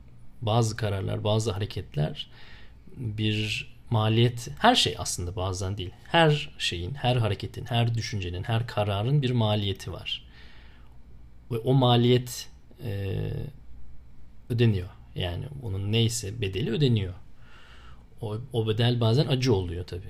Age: 40-59